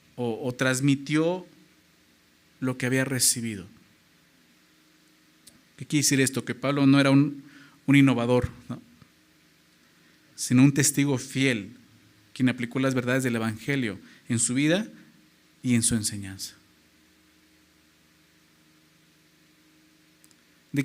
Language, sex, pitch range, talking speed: Spanish, male, 110-150 Hz, 105 wpm